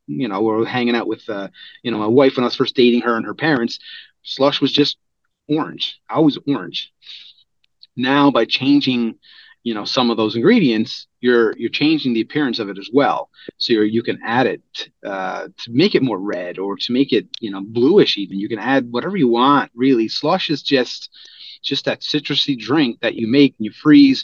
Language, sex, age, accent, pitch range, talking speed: English, male, 30-49, American, 115-145 Hz, 210 wpm